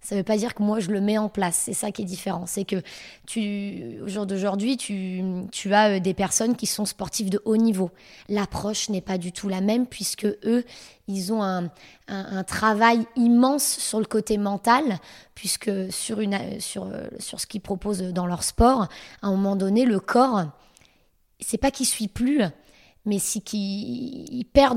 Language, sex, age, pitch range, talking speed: French, female, 20-39, 190-225 Hz, 195 wpm